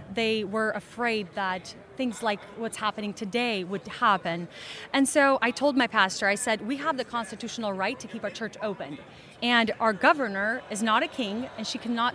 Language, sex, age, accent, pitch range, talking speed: English, female, 30-49, American, 215-270 Hz, 195 wpm